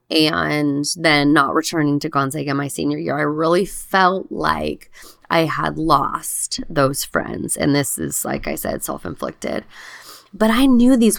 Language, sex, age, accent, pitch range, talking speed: English, female, 20-39, American, 150-200 Hz, 155 wpm